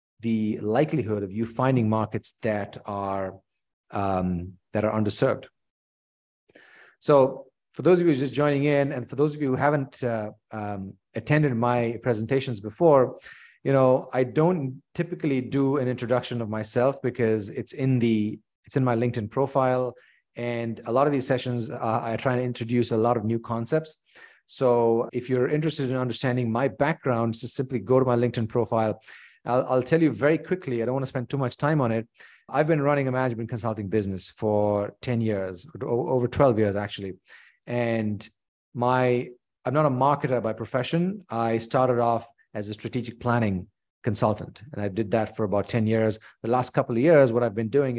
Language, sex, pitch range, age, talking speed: English, male, 110-130 Hz, 30-49, 185 wpm